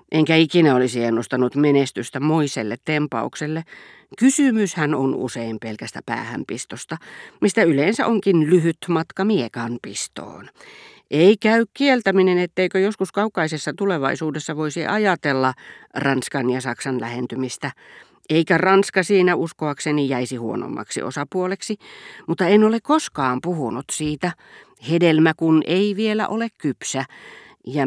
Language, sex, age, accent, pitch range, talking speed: Finnish, female, 40-59, native, 140-195 Hz, 110 wpm